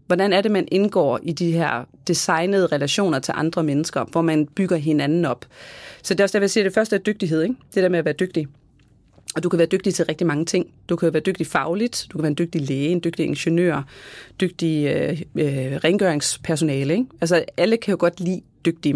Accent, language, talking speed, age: native, Danish, 220 wpm, 30-49